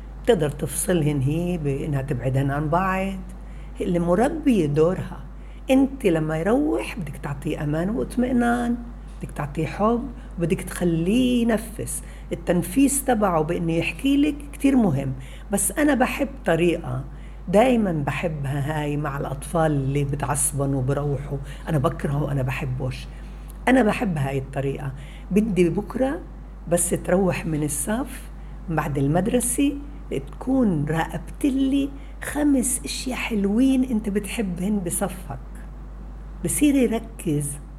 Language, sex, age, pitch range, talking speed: Arabic, female, 60-79, 155-245 Hz, 110 wpm